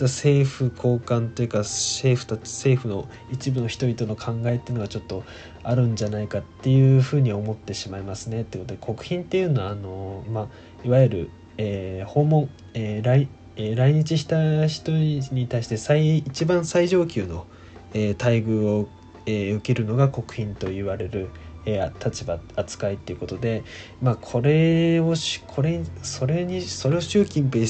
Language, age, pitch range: Japanese, 20-39, 100-135 Hz